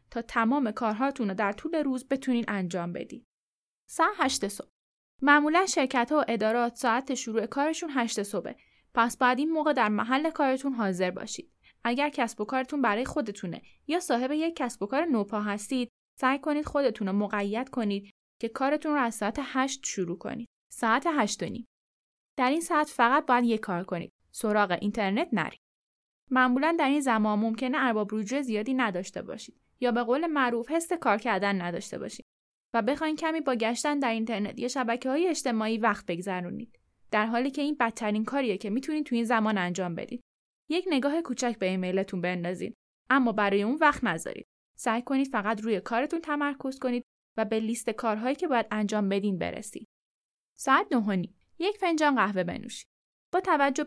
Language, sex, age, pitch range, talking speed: Persian, female, 10-29, 210-275 Hz, 170 wpm